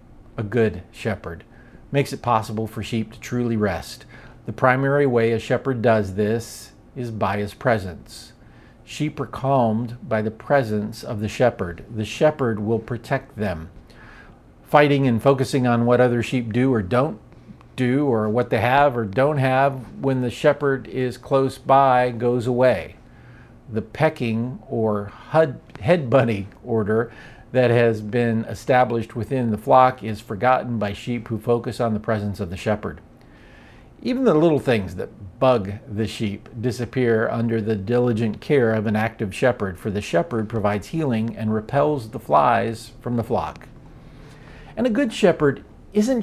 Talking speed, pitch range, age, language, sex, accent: 155 wpm, 110-135 Hz, 50-69, English, male, American